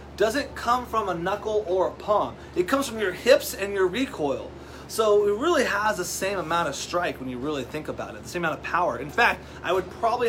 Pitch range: 165-205 Hz